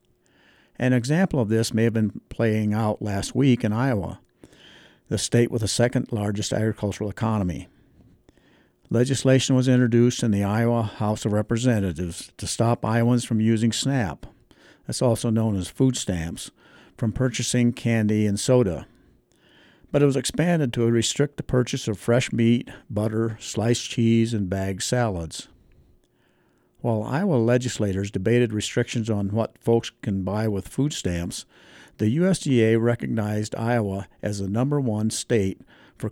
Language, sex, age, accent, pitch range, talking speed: English, male, 60-79, American, 105-125 Hz, 145 wpm